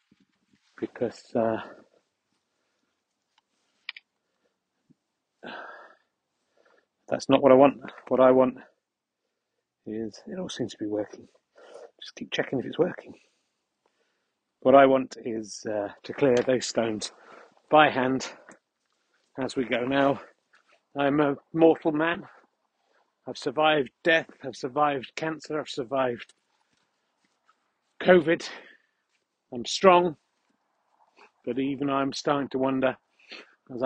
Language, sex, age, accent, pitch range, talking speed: English, male, 40-59, British, 125-155 Hz, 105 wpm